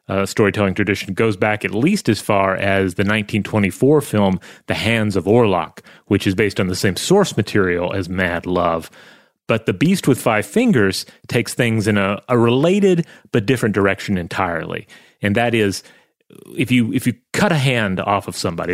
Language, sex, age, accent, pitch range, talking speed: English, male, 30-49, American, 100-125 Hz, 185 wpm